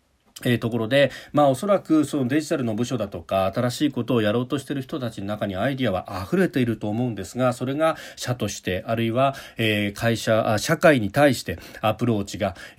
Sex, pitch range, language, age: male, 105-140 Hz, Japanese, 40-59